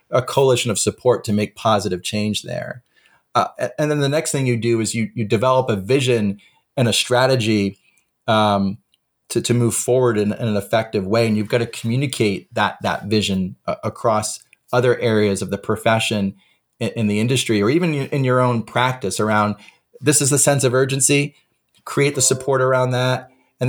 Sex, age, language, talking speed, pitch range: male, 30-49, English, 185 wpm, 110-130 Hz